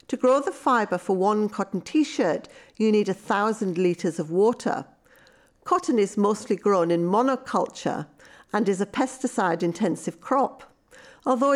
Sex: female